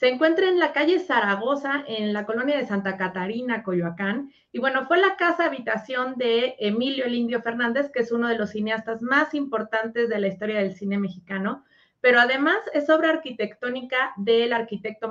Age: 30-49